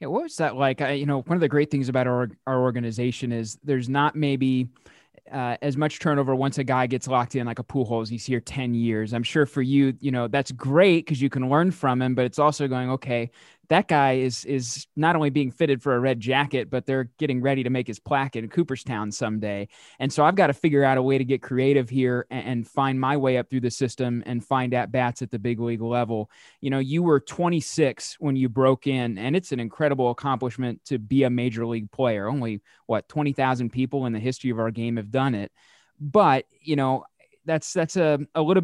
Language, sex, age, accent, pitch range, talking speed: English, male, 20-39, American, 125-145 Hz, 240 wpm